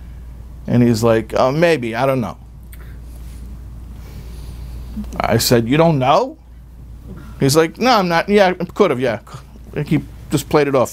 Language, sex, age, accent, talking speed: English, male, 50-69, American, 155 wpm